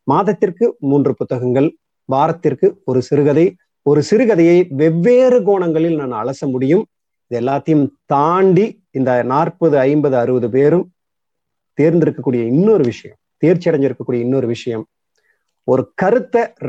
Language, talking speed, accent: Tamil, 105 wpm, native